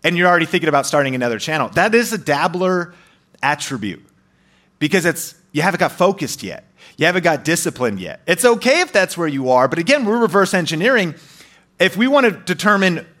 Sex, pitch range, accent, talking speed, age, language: male, 140-185 Hz, American, 185 wpm, 30-49, English